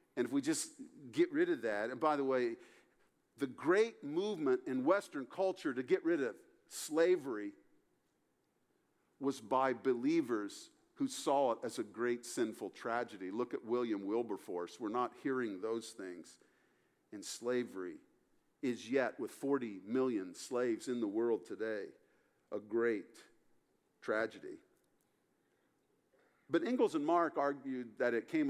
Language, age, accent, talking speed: English, 50-69, American, 140 wpm